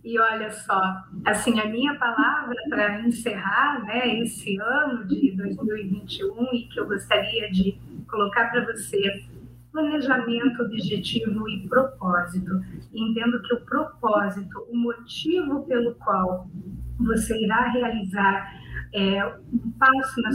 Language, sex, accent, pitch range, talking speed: Portuguese, female, Brazilian, 200-245 Hz, 120 wpm